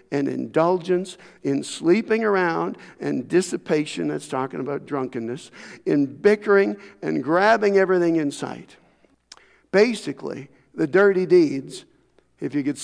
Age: 60-79